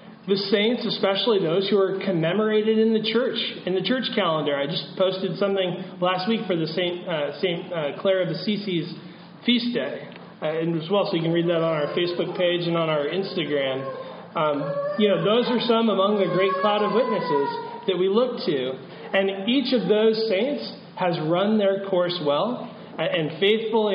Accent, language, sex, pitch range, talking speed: American, English, male, 175-220 Hz, 195 wpm